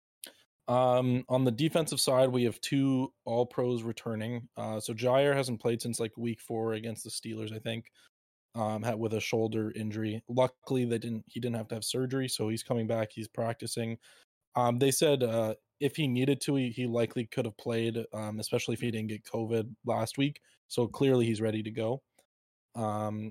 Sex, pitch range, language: male, 110-125 Hz, English